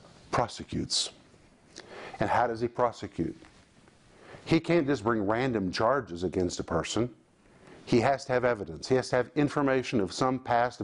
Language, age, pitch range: English, 50-69, 105-130 Hz